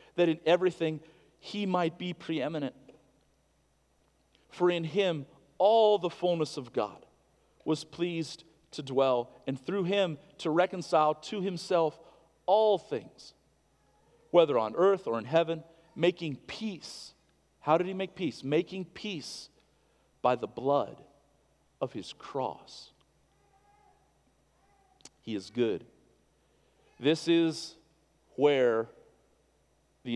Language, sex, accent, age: English, male, American, 40-59